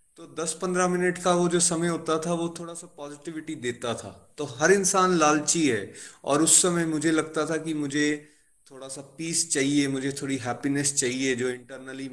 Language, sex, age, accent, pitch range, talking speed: Hindi, male, 20-39, native, 130-160 Hz, 195 wpm